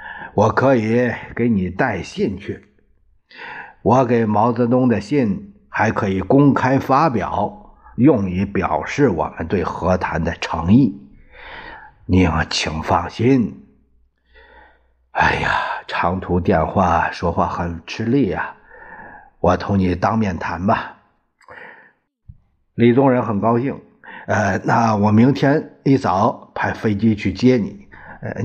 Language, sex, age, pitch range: Chinese, male, 50-69, 90-115 Hz